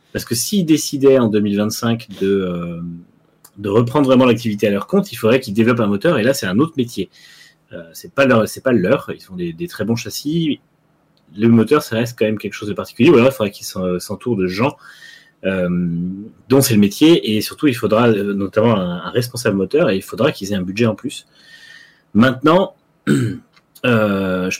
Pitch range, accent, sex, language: 100-135 Hz, French, male, French